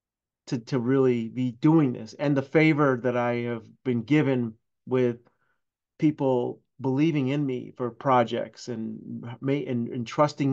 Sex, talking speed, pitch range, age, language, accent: male, 140 wpm, 125-150 Hz, 30-49, English, American